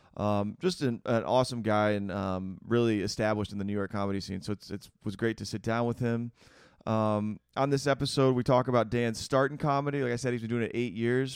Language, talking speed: English, 245 wpm